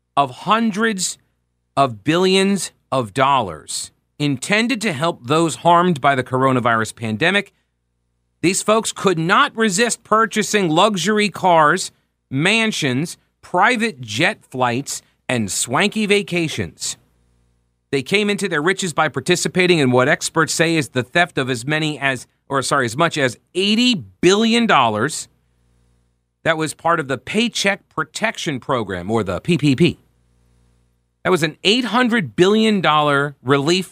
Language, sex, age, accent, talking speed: English, male, 40-59, American, 125 wpm